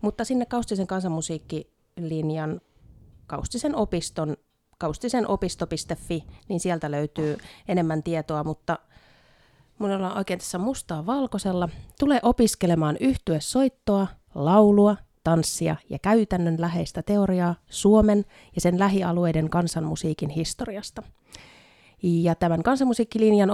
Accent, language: native, Finnish